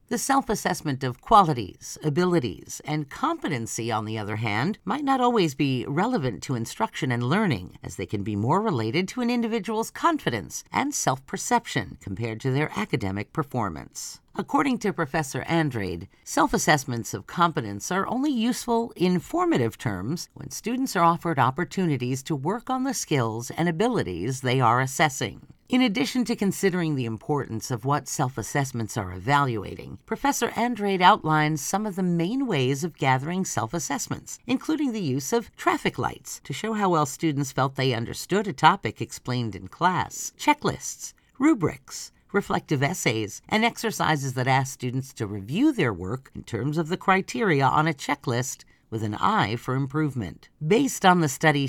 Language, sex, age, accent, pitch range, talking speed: English, female, 50-69, American, 125-195 Hz, 155 wpm